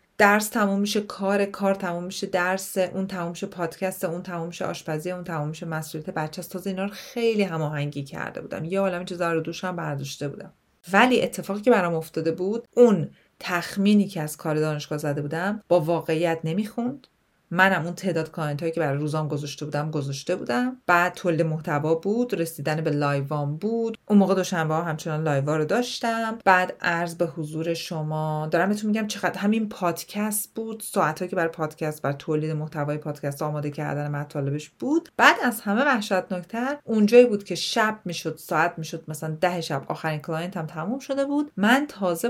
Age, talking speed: 30-49, 175 wpm